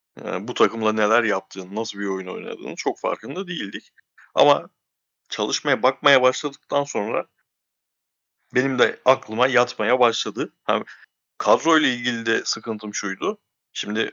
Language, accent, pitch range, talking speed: Turkish, native, 105-130 Hz, 125 wpm